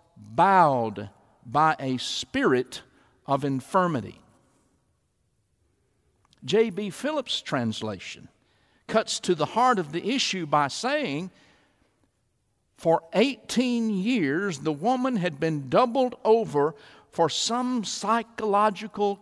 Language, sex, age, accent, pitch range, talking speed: English, male, 60-79, American, 135-220 Hz, 95 wpm